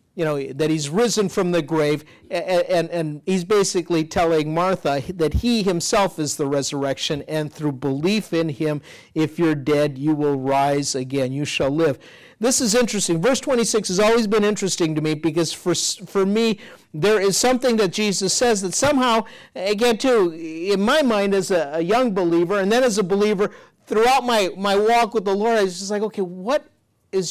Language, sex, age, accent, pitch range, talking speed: English, male, 50-69, American, 155-215 Hz, 195 wpm